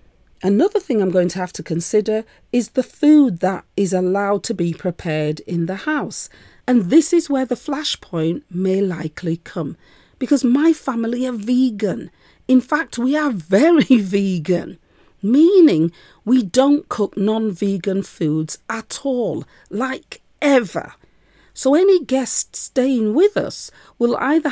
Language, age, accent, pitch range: English, 40-59, British, 185-280 Hz